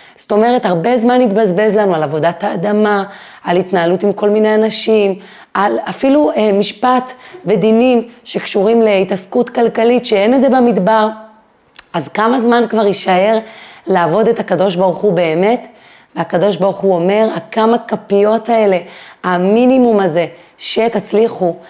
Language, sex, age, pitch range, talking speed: Hebrew, female, 30-49, 180-225 Hz, 130 wpm